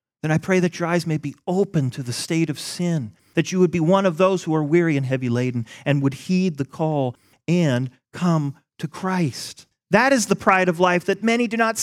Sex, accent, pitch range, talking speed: male, American, 135-180 Hz, 235 wpm